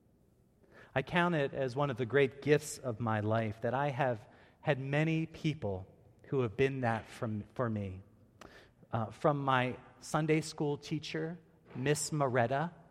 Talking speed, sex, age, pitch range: 155 wpm, male, 30-49, 120-150 Hz